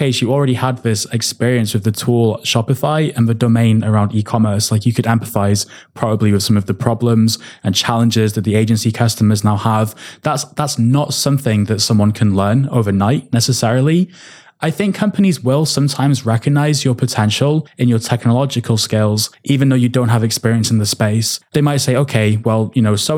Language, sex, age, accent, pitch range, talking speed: English, male, 20-39, British, 110-140 Hz, 185 wpm